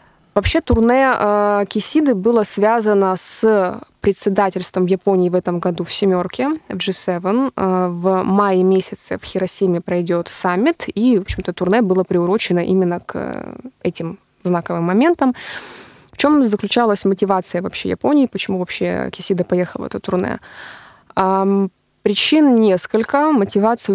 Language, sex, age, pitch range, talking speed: Russian, female, 20-39, 185-220 Hz, 135 wpm